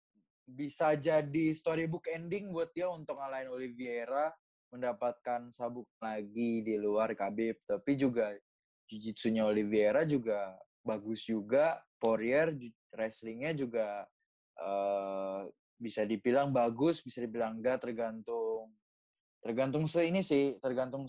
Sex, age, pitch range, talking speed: male, 20-39, 115-150 Hz, 105 wpm